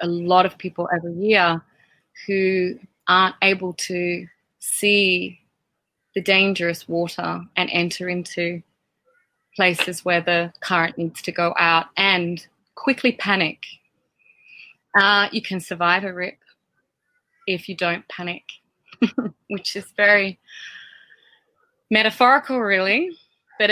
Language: English